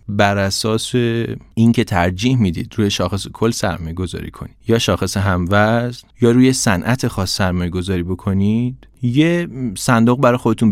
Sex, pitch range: male, 95-115 Hz